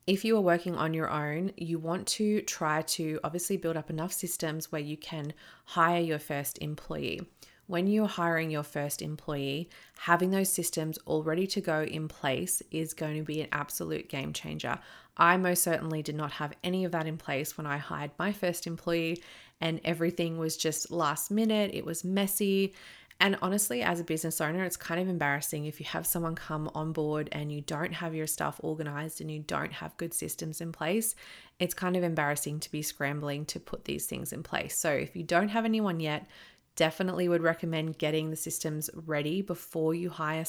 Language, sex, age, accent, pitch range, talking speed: English, female, 20-39, Australian, 155-180 Hz, 200 wpm